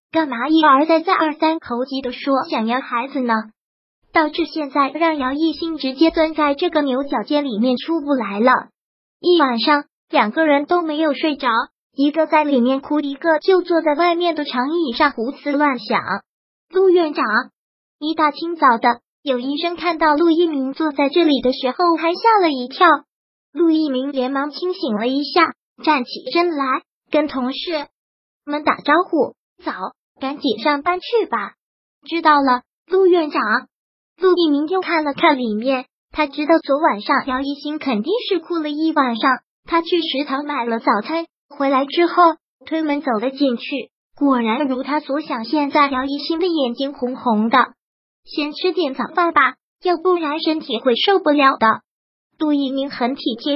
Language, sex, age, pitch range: Chinese, male, 20-39, 265-325 Hz